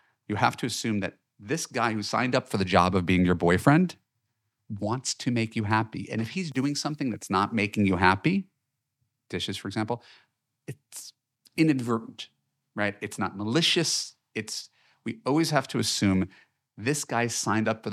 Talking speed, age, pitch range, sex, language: 175 wpm, 40-59, 95-120 Hz, male, English